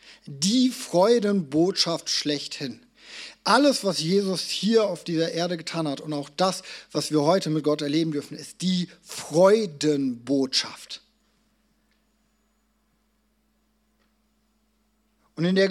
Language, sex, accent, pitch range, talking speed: German, male, German, 145-200 Hz, 105 wpm